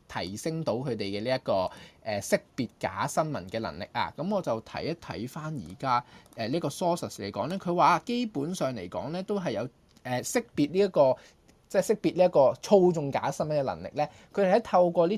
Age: 20-39